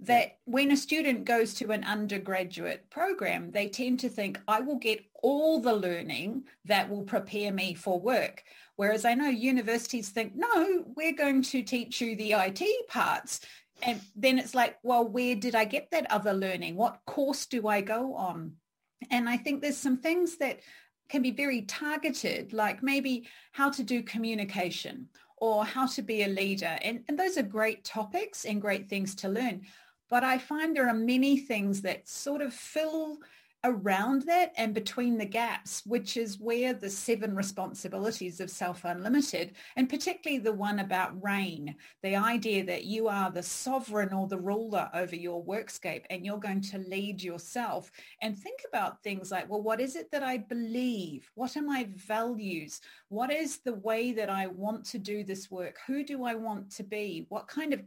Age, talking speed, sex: 40-59, 185 wpm, female